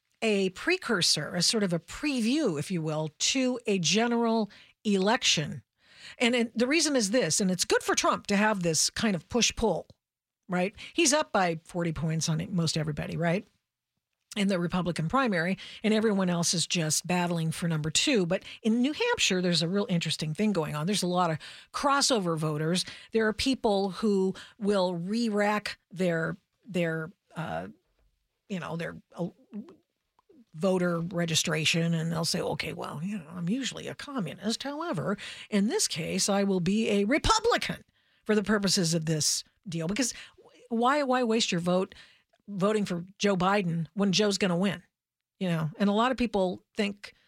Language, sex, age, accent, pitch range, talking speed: English, female, 50-69, American, 175-225 Hz, 170 wpm